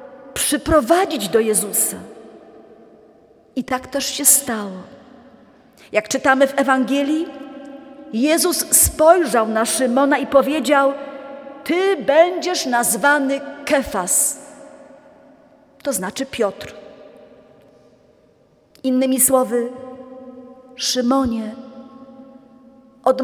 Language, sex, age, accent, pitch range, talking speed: Polish, female, 40-59, native, 260-300 Hz, 75 wpm